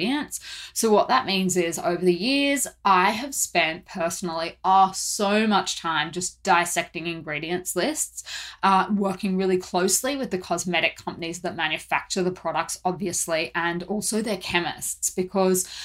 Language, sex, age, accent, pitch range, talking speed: English, female, 20-39, Australian, 170-195 Hz, 140 wpm